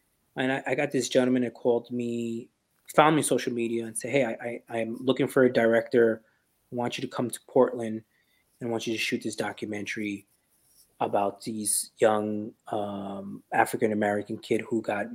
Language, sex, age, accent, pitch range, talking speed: English, male, 20-39, American, 110-150 Hz, 185 wpm